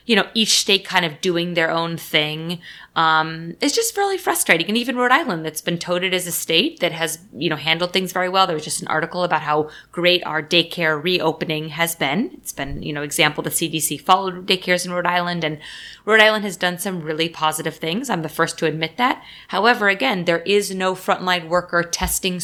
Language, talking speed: English, 215 wpm